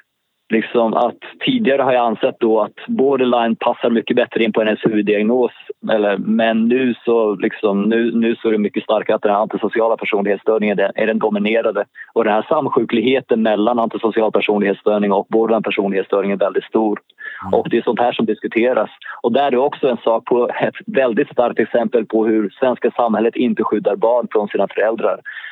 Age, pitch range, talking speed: 20-39, 105-125 Hz, 185 wpm